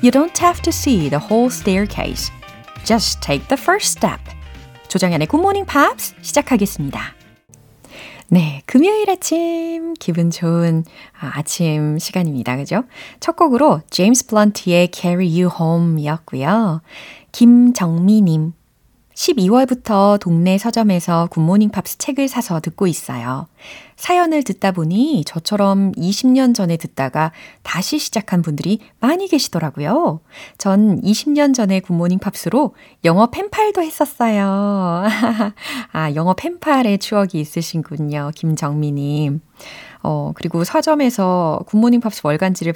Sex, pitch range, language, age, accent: female, 160-245 Hz, Korean, 30-49, native